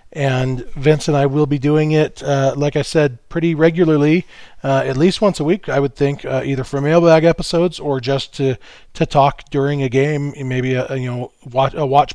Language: English